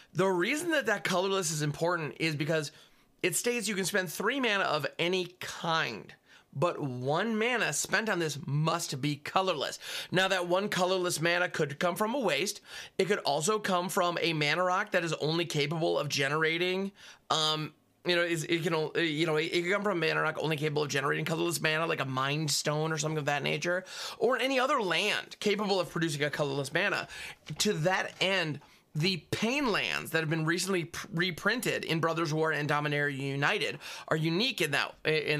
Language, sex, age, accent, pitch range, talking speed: English, male, 30-49, American, 150-185 Hz, 190 wpm